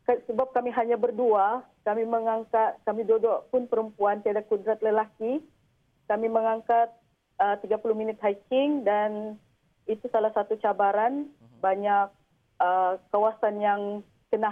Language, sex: Malay, female